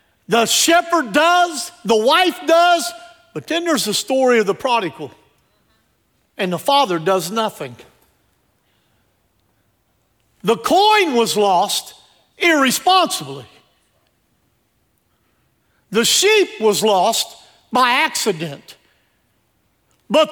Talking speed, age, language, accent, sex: 90 wpm, 50-69, English, American, male